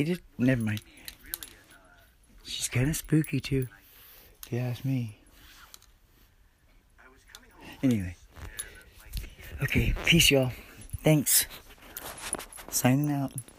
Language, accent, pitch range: English, American, 120-150 Hz